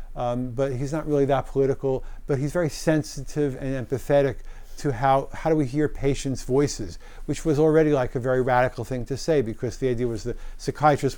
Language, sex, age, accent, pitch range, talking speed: English, male, 50-69, American, 125-150 Hz, 200 wpm